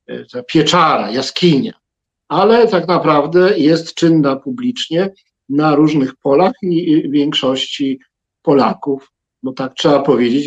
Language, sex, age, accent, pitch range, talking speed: Polish, male, 50-69, native, 130-170 Hz, 110 wpm